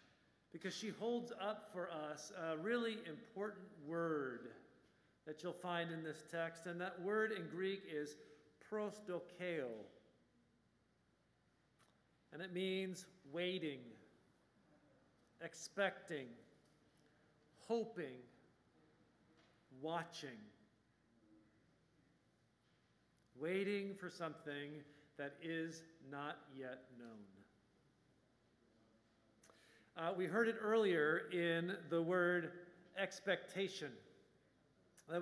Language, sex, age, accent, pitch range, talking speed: English, male, 50-69, American, 155-195 Hz, 80 wpm